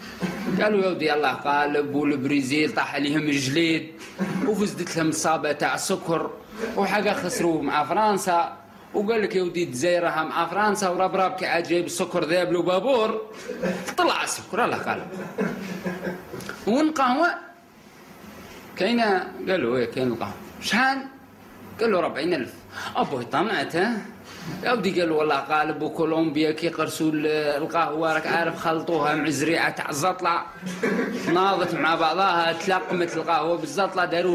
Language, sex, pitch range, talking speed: Arabic, male, 160-210 Hz, 115 wpm